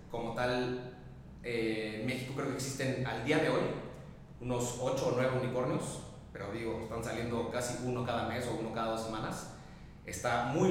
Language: Spanish